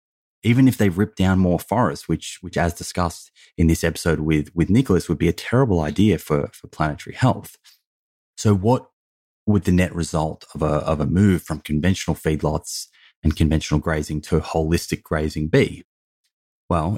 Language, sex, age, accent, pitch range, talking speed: English, male, 30-49, Australian, 75-90 Hz, 170 wpm